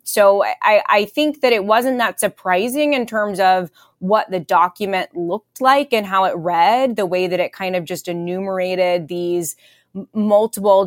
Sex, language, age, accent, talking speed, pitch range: female, English, 20-39, American, 175 wpm, 185-225 Hz